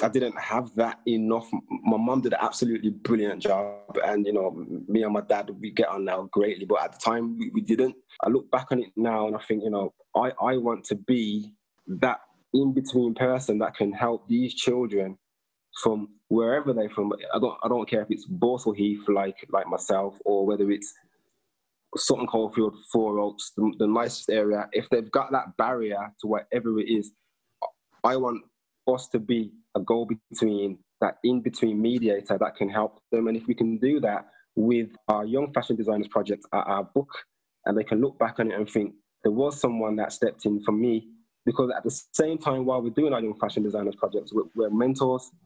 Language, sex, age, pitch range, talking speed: English, male, 20-39, 105-125 Hz, 205 wpm